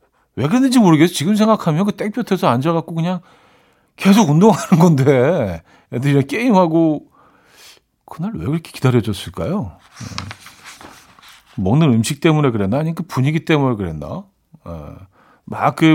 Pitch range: 120-160 Hz